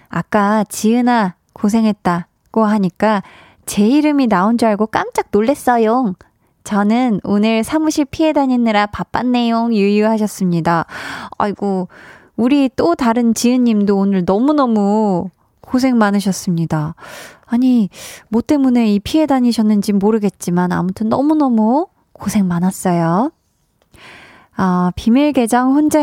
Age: 20-39